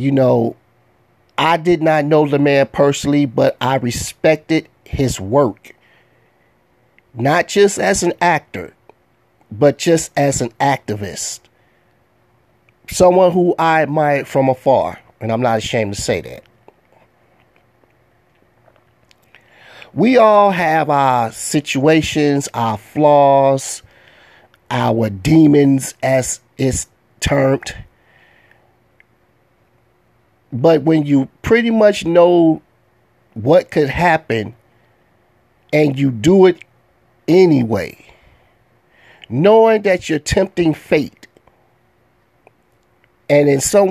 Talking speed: 95 wpm